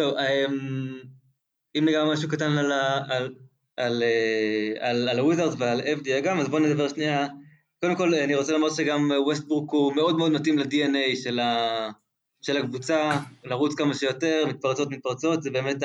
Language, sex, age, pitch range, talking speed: Hebrew, male, 20-39, 130-155 Hz, 155 wpm